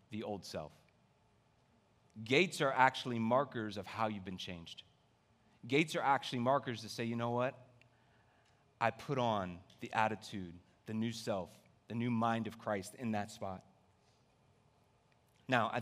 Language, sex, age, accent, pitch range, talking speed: English, male, 30-49, American, 105-135 Hz, 150 wpm